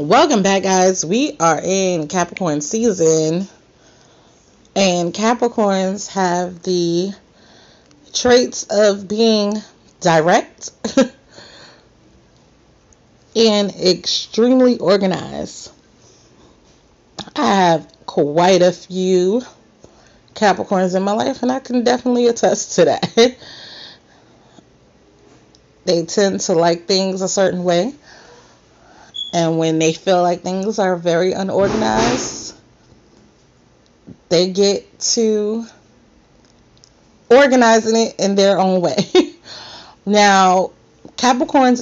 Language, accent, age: English, American, 30-49